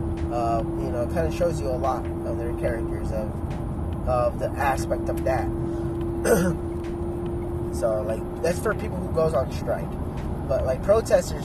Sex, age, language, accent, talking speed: male, 20-39, English, American, 160 wpm